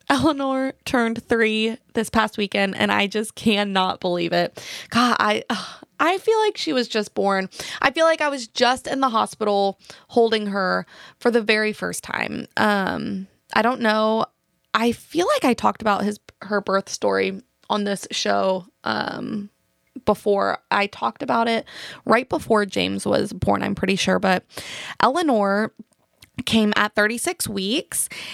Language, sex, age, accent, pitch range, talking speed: English, female, 20-39, American, 200-250 Hz, 155 wpm